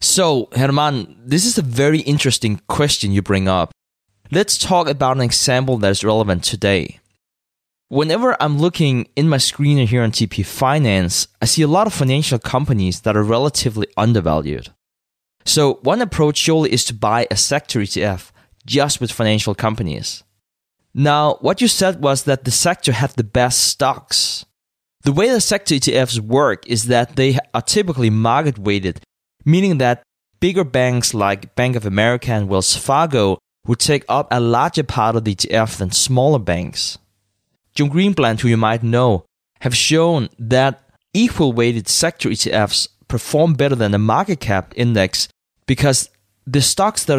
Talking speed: 160 wpm